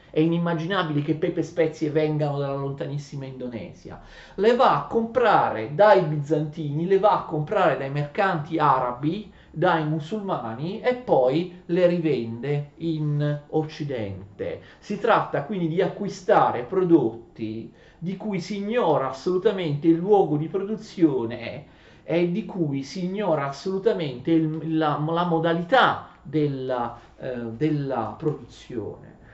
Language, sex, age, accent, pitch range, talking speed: Italian, male, 40-59, native, 130-180 Hz, 120 wpm